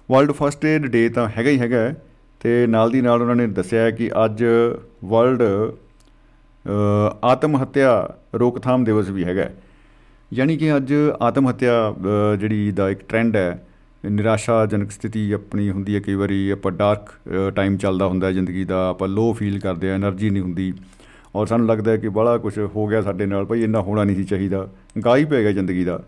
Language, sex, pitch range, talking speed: Punjabi, male, 100-125 Hz, 160 wpm